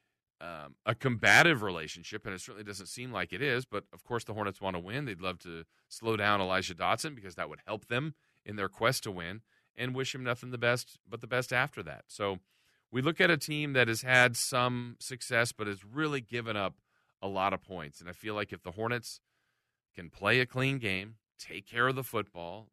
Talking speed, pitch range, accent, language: 225 wpm, 95-120 Hz, American, English